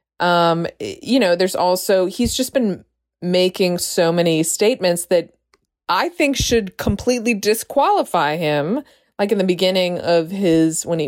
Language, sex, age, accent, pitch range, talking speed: English, female, 20-39, American, 165-210 Hz, 145 wpm